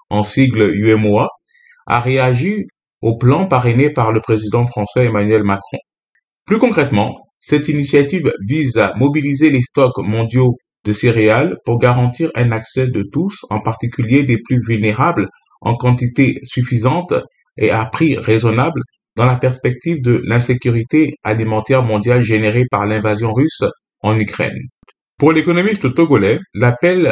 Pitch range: 110-140 Hz